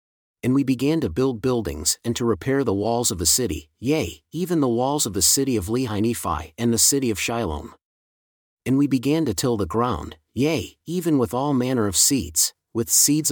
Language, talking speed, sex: English, 200 wpm, male